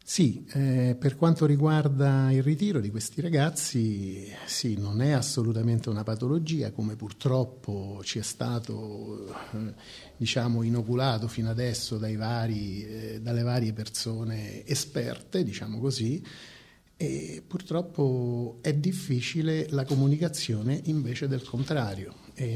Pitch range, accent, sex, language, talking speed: 105-140 Hz, native, male, Italian, 115 wpm